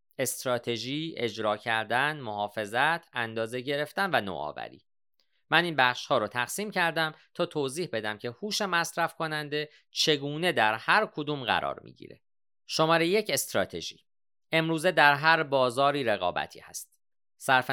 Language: Persian